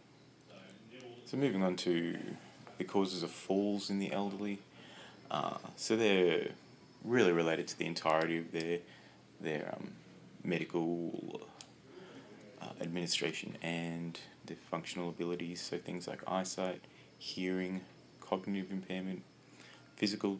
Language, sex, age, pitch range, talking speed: English, male, 30-49, 85-100 Hz, 110 wpm